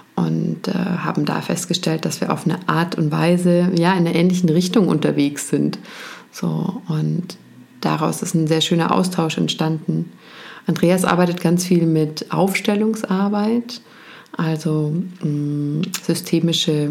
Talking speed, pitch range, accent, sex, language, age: 120 wpm, 160-190 Hz, German, female, German, 50-69